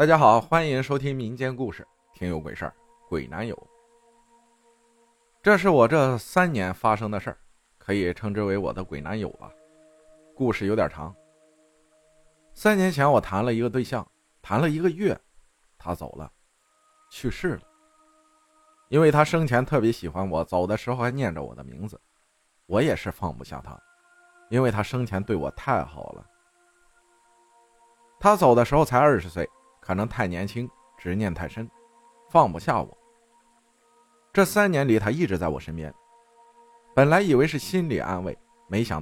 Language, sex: Chinese, male